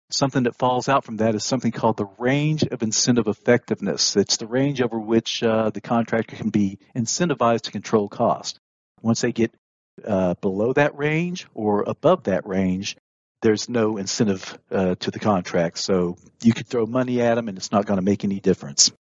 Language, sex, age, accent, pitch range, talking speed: English, male, 50-69, American, 105-135 Hz, 190 wpm